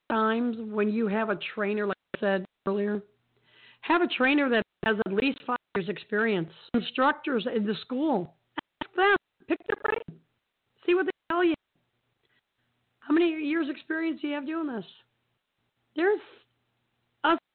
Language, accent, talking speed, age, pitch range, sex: English, American, 155 wpm, 50-69, 200-265 Hz, female